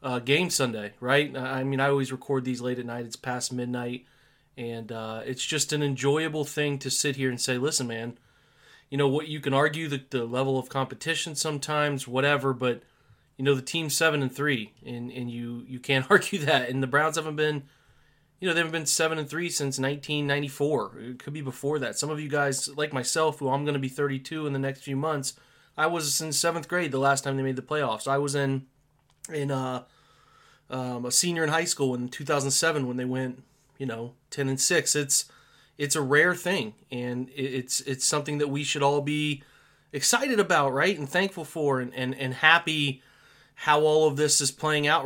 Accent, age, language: American, 20-39, English